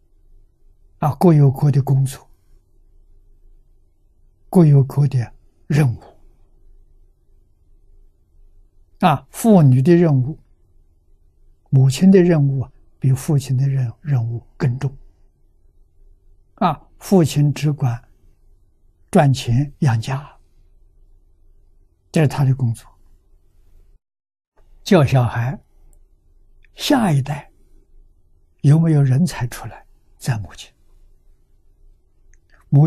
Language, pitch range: Chinese, 80-135 Hz